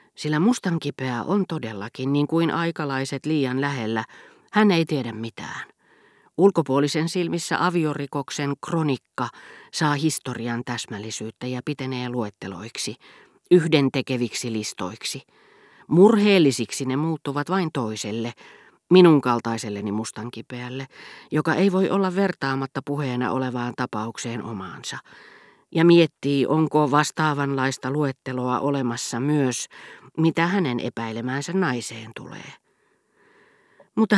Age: 40-59